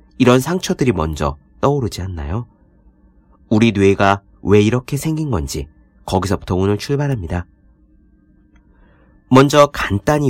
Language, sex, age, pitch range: Korean, male, 40-59, 85-135 Hz